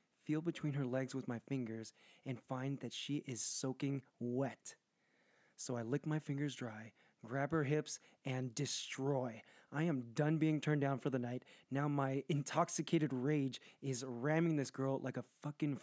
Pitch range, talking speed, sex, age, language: 120-145 Hz, 170 wpm, male, 20-39, English